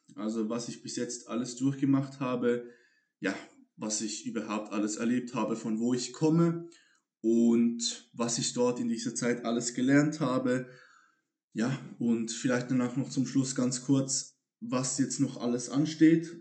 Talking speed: 155 wpm